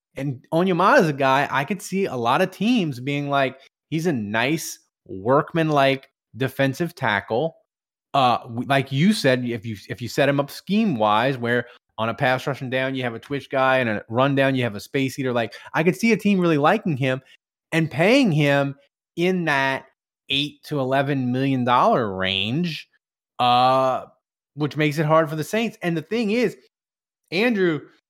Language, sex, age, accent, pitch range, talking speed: English, male, 20-39, American, 125-170 Hz, 185 wpm